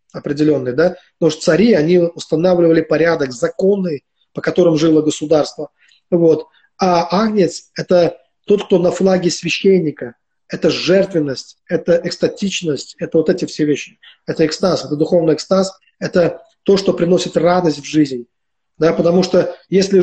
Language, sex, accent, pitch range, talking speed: Russian, male, native, 160-195 Hz, 140 wpm